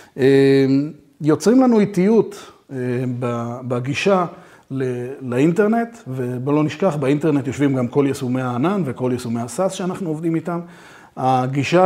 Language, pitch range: Hebrew, 125-170 Hz